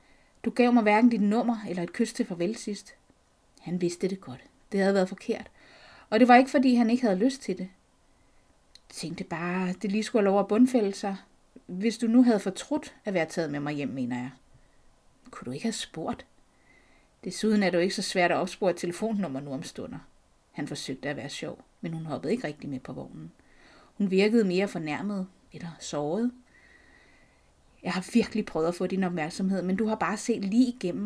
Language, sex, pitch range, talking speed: Danish, female, 175-220 Hz, 210 wpm